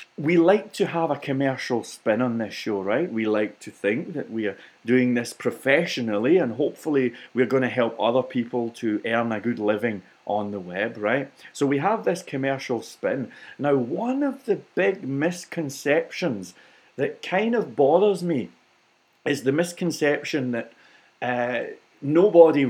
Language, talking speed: English, 160 wpm